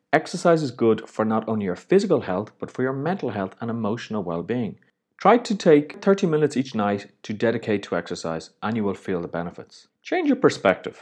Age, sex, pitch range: 30-49, male, 105-150 Hz